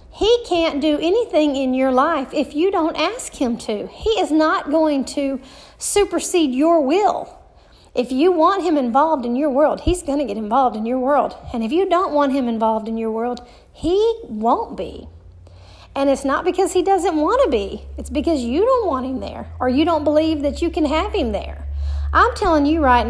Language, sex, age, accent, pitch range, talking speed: English, female, 40-59, American, 225-320 Hz, 210 wpm